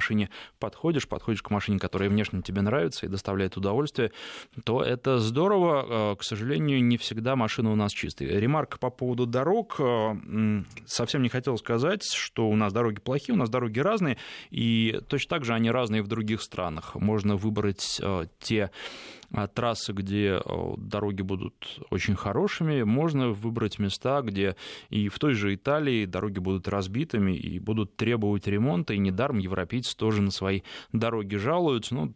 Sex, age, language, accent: male, 20-39, Russian, native